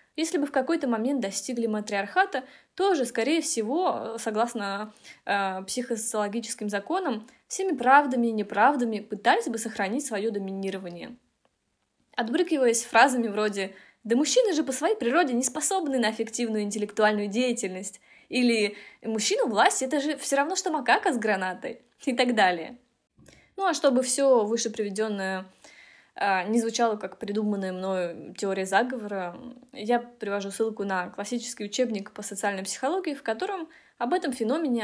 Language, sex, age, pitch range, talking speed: Russian, female, 20-39, 205-275 Hz, 140 wpm